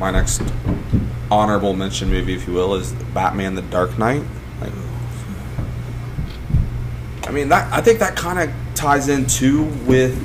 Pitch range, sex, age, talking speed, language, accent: 100-120 Hz, male, 20-39, 150 wpm, English, American